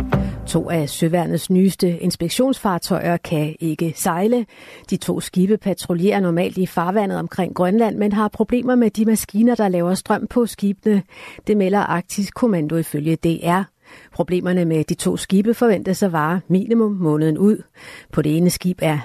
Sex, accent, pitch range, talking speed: female, native, 165-210 Hz, 160 wpm